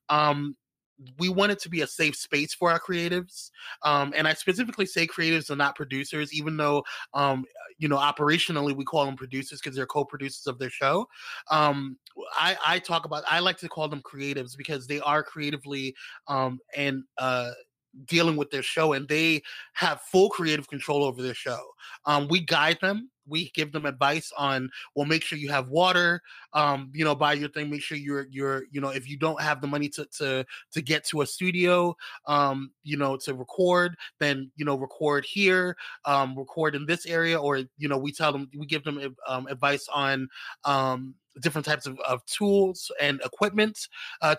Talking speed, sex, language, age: 195 wpm, male, English, 20-39